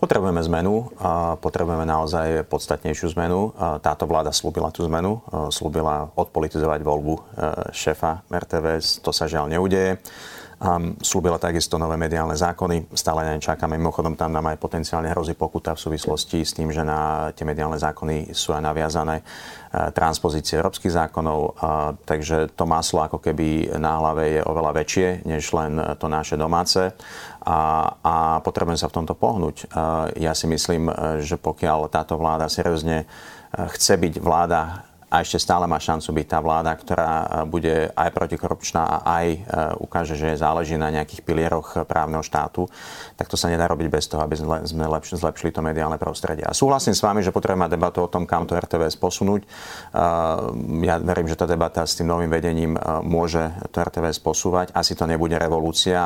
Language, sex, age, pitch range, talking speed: Slovak, male, 30-49, 80-85 Hz, 155 wpm